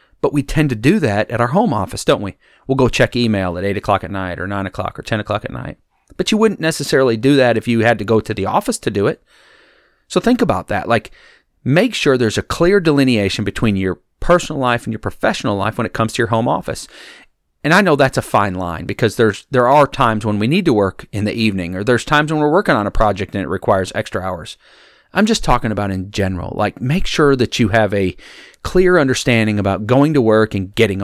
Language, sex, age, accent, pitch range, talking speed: English, male, 40-59, American, 105-155 Hz, 245 wpm